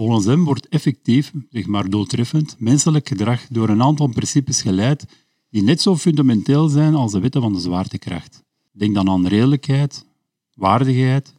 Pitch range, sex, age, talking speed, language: 110-140 Hz, male, 50-69, 160 wpm, Dutch